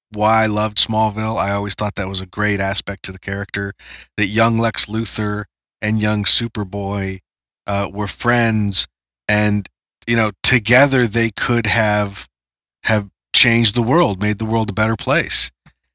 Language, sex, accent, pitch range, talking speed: English, male, American, 100-125 Hz, 160 wpm